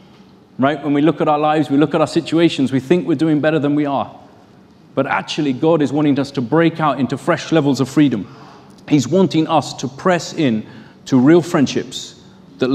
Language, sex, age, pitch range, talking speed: English, male, 30-49, 130-170 Hz, 205 wpm